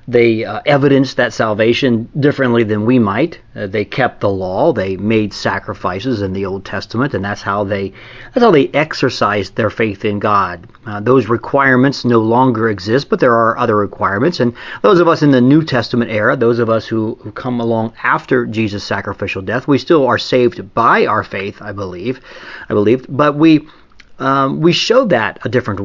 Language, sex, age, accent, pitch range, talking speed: English, male, 40-59, American, 105-125 Hz, 190 wpm